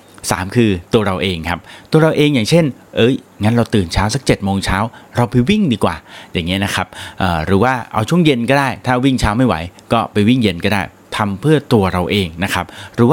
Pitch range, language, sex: 100-135 Hz, Thai, male